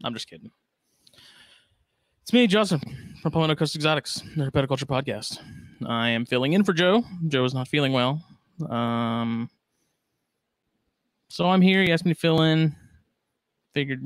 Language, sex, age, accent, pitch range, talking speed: English, male, 20-39, American, 125-155 Hz, 150 wpm